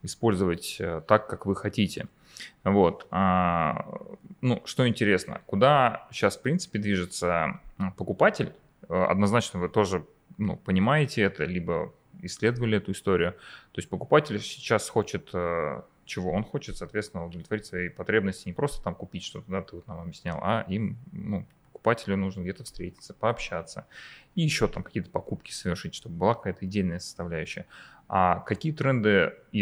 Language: Russian